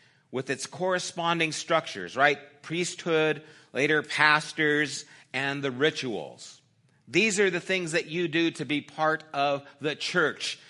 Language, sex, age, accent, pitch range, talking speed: English, male, 40-59, American, 135-170 Hz, 135 wpm